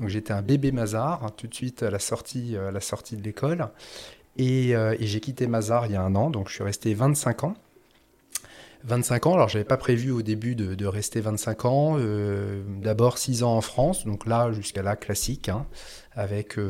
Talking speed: 220 wpm